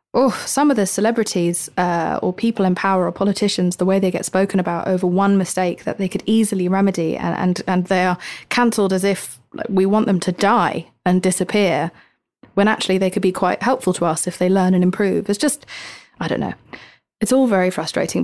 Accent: British